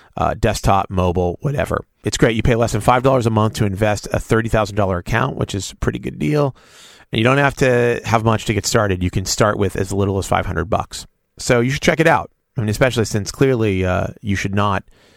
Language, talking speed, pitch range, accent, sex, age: English, 230 wpm, 95-125 Hz, American, male, 30-49